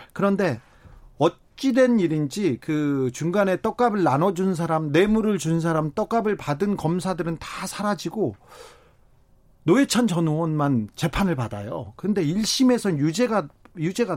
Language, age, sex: Korean, 40-59, male